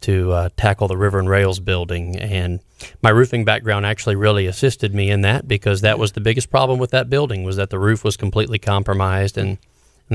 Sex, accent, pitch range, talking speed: male, American, 100-120 Hz, 215 wpm